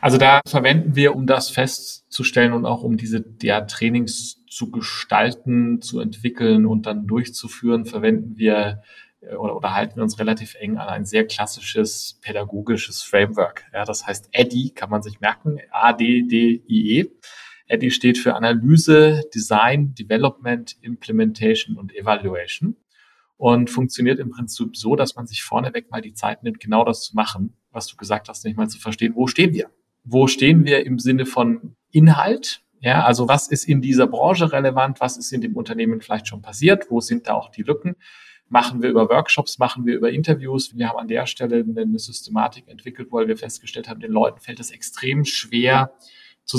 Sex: male